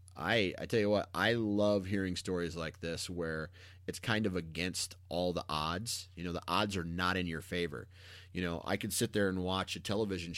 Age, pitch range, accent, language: 30-49, 85-100 Hz, American, English